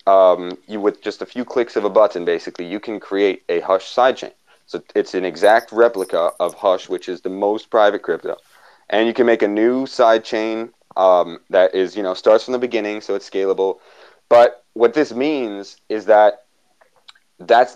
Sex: male